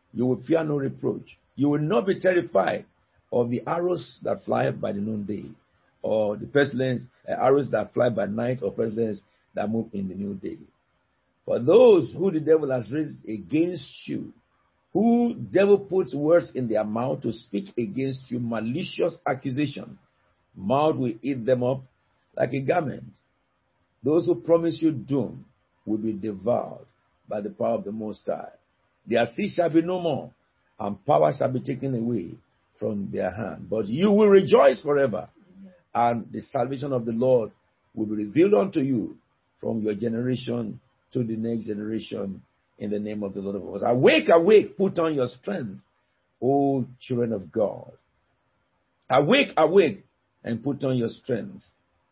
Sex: male